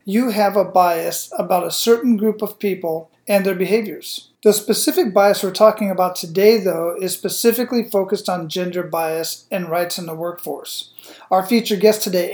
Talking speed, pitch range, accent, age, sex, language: 175 wpm, 180-210 Hz, American, 40-59, male, English